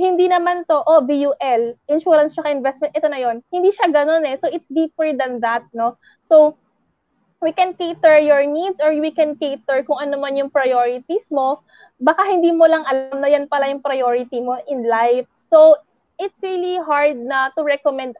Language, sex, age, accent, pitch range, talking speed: English, female, 20-39, Filipino, 250-320 Hz, 200 wpm